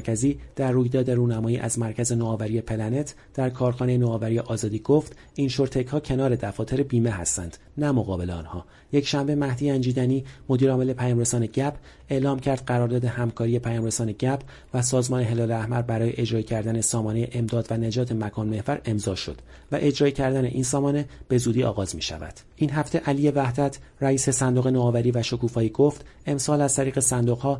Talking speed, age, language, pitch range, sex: 160 wpm, 40-59, Persian, 115-135 Hz, male